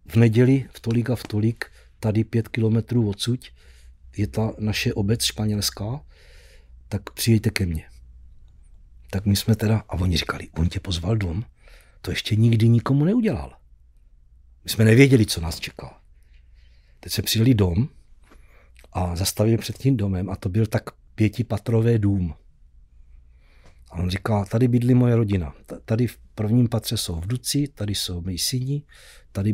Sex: male